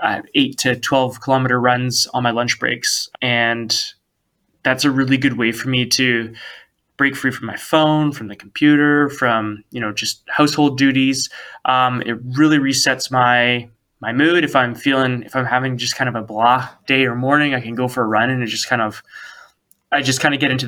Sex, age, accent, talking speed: male, 20-39, American, 205 wpm